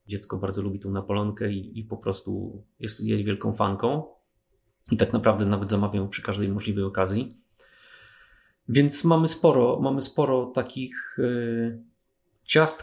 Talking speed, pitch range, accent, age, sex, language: 130 wpm, 105-120 Hz, native, 30-49, male, Polish